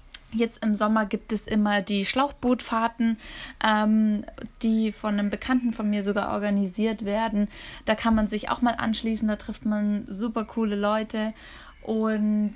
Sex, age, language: female, 10-29, German